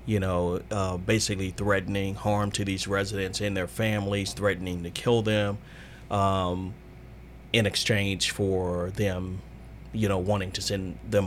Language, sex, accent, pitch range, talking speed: English, male, American, 90-105 Hz, 145 wpm